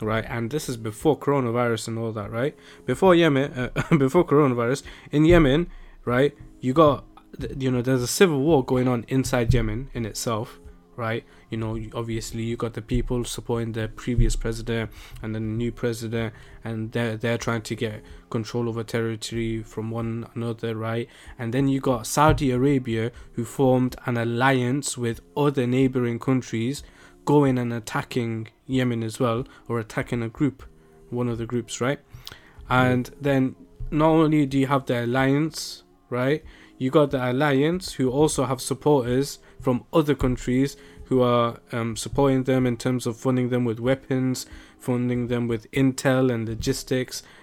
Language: English